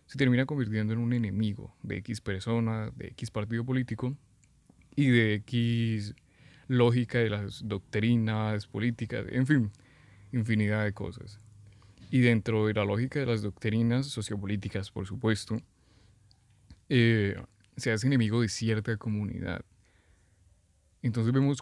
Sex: male